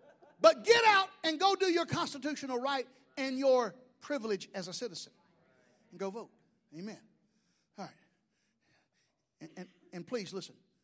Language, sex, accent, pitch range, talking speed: English, male, American, 215-340 Hz, 145 wpm